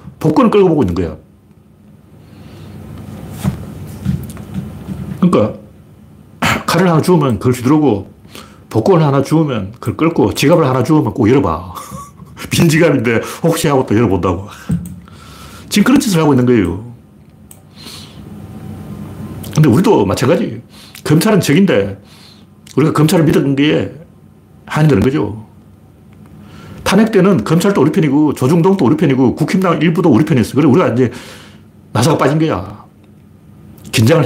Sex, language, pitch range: male, Korean, 105-160 Hz